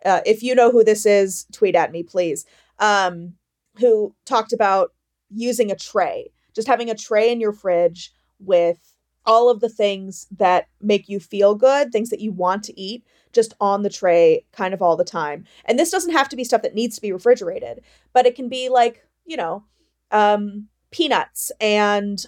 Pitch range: 190-245 Hz